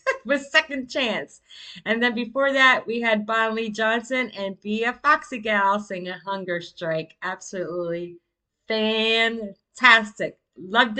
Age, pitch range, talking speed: 30-49, 190-245 Hz, 130 wpm